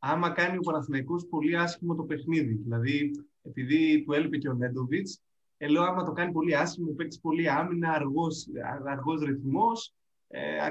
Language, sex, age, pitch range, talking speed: Greek, male, 20-39, 135-175 Hz, 160 wpm